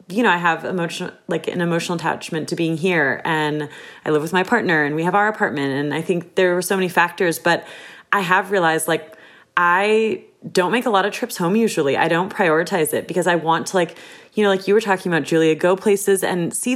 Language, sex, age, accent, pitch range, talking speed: English, female, 30-49, American, 170-195 Hz, 235 wpm